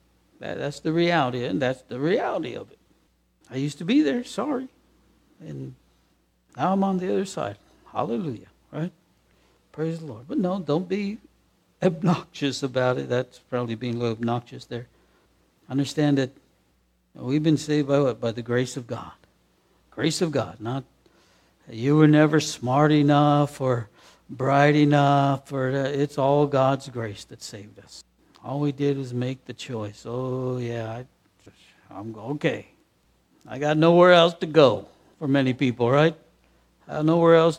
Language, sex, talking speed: English, male, 160 wpm